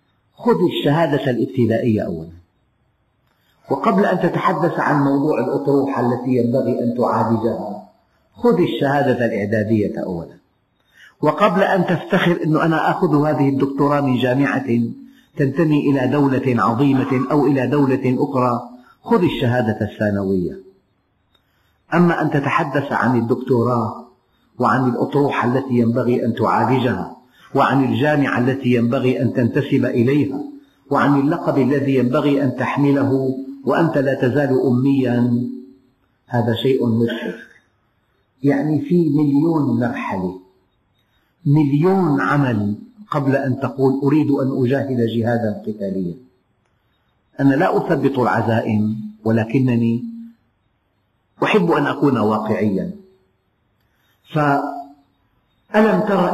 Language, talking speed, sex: Arabic, 100 wpm, male